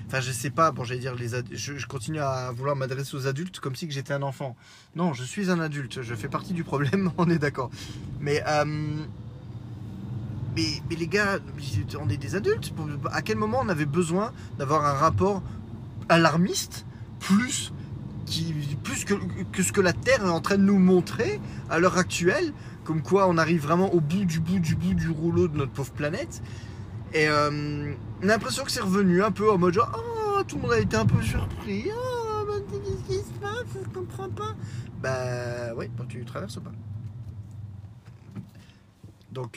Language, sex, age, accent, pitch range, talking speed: French, male, 20-39, French, 115-165 Hz, 200 wpm